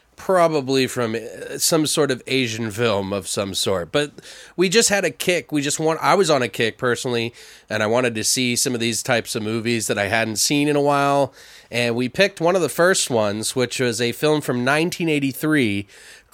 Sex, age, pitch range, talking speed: male, 30-49, 120-155 Hz, 210 wpm